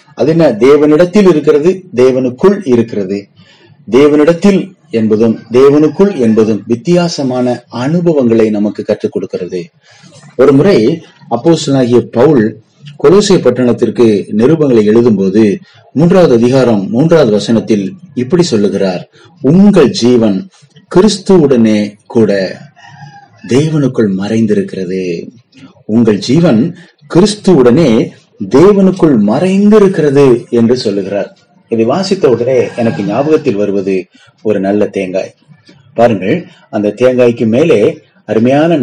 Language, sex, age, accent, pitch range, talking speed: Tamil, male, 30-49, native, 105-165 Hz, 75 wpm